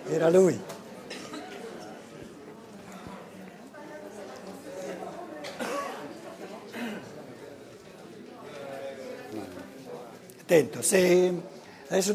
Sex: male